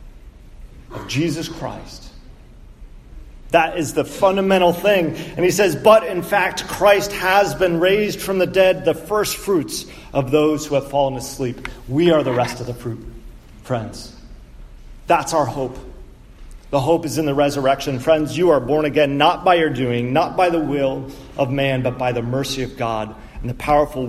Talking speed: 175 wpm